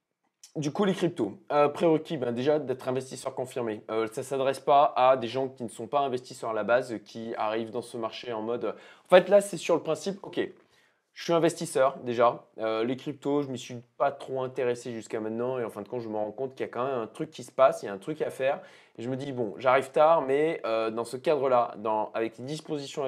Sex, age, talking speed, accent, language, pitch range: male, 20-39, 265 wpm, French, French, 110-140 Hz